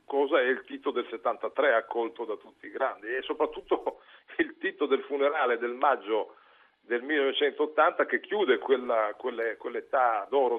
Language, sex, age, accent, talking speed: Italian, male, 50-69, native, 155 wpm